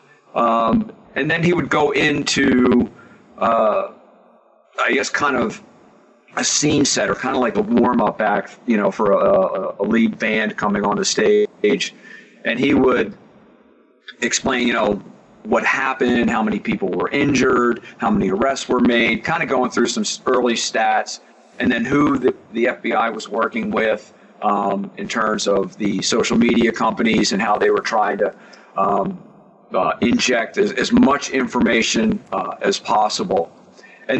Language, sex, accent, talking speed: English, male, American, 165 wpm